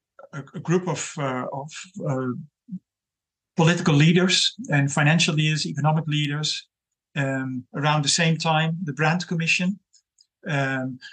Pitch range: 140-170 Hz